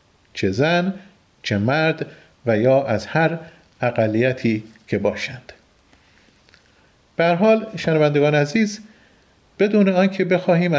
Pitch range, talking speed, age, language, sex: 120-170 Hz, 95 wpm, 40-59, Persian, male